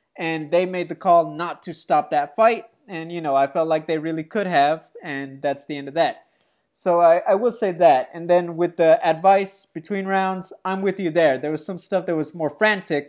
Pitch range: 165-215 Hz